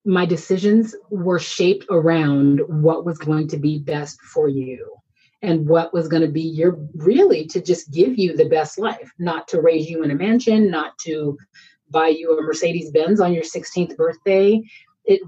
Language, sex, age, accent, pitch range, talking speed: English, female, 30-49, American, 150-190 Hz, 185 wpm